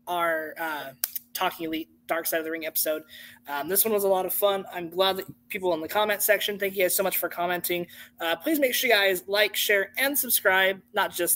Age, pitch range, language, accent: 20-39, 175-220 Hz, English, American